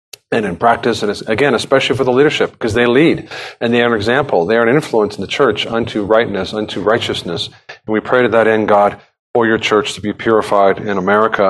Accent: American